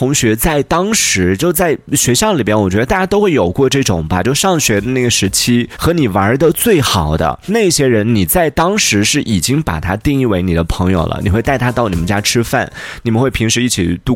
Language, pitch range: Chinese, 100-170 Hz